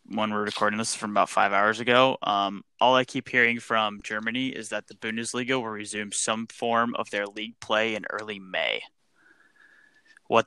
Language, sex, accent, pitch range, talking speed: English, male, American, 105-125 Hz, 190 wpm